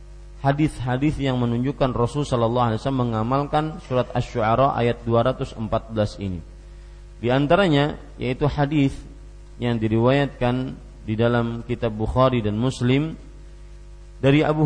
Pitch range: 110-140 Hz